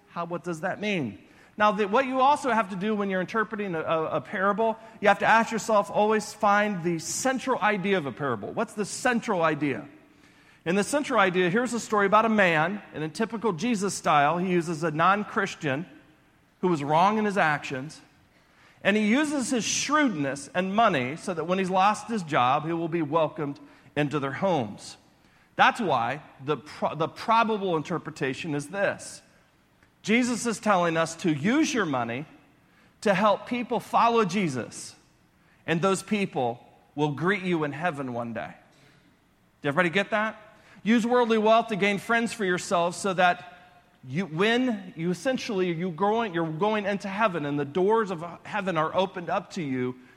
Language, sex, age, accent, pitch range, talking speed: English, male, 40-59, American, 160-215 Hz, 180 wpm